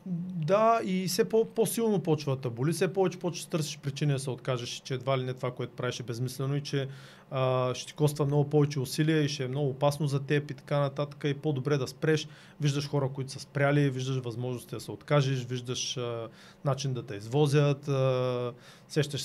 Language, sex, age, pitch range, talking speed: Bulgarian, male, 30-49, 130-180 Hz, 210 wpm